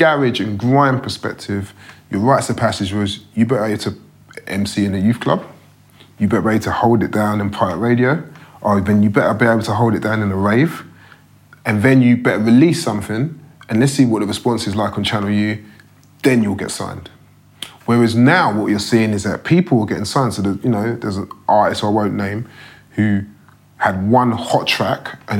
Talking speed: 210 wpm